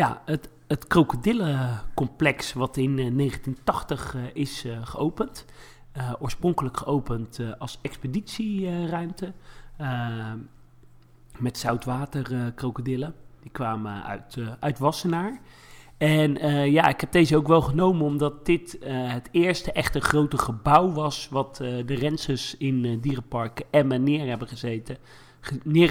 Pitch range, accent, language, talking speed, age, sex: 125-155 Hz, Dutch, Dutch, 130 wpm, 40-59, male